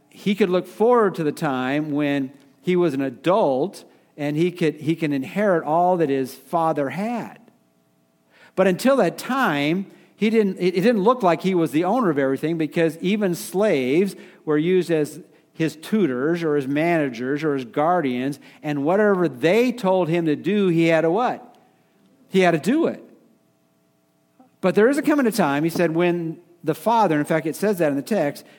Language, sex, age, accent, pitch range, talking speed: English, male, 50-69, American, 140-190 Hz, 185 wpm